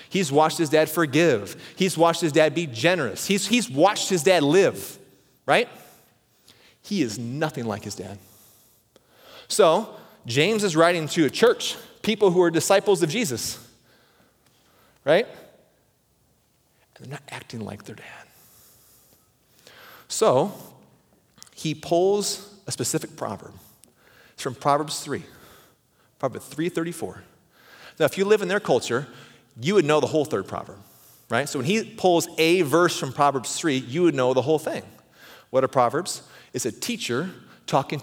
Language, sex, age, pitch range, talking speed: English, male, 30-49, 125-170 Hz, 150 wpm